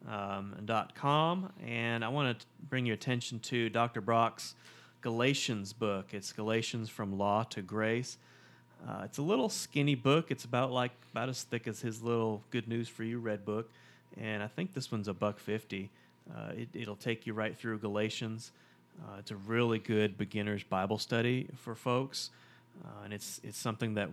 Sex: male